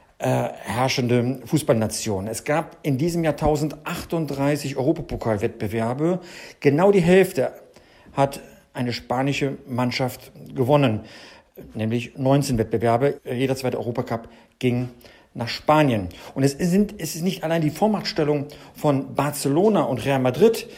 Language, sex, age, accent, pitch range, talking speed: German, male, 50-69, German, 125-160 Hz, 115 wpm